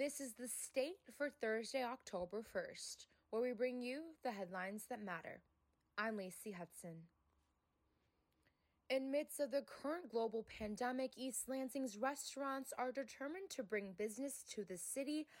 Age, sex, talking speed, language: 20-39, female, 145 wpm, English